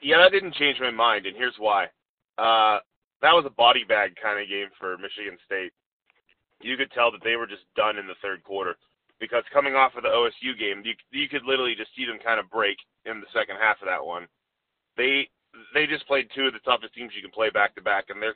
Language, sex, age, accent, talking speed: English, male, 30-49, American, 235 wpm